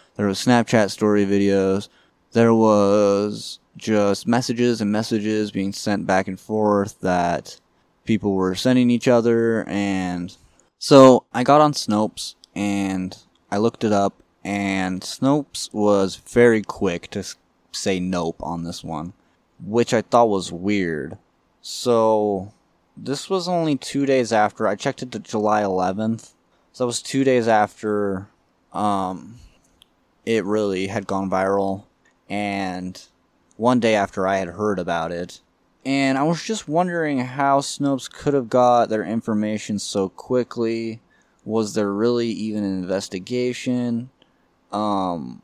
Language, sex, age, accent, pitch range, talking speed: English, male, 20-39, American, 95-120 Hz, 135 wpm